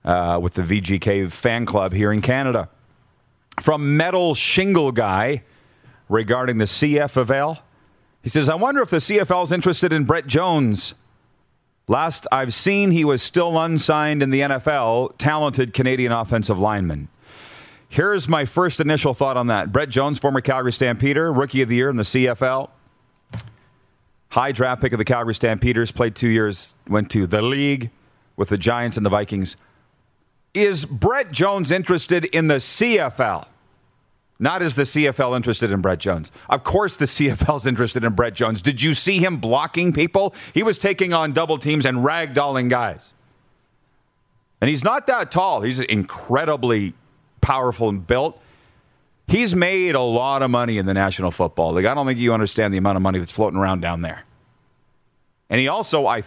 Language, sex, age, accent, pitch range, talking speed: English, male, 40-59, American, 110-150 Hz, 170 wpm